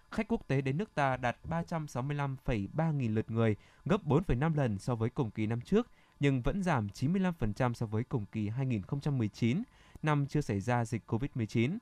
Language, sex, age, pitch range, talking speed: Vietnamese, male, 20-39, 120-155 Hz, 180 wpm